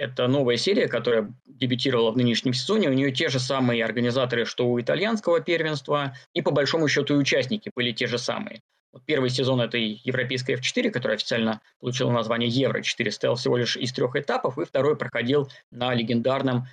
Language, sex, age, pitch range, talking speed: Russian, male, 20-39, 120-140 Hz, 175 wpm